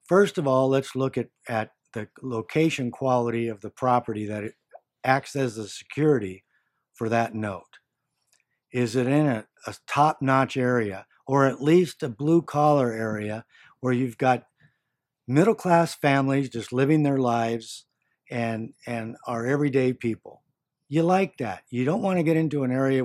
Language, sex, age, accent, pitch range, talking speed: English, male, 50-69, American, 115-145 Hz, 155 wpm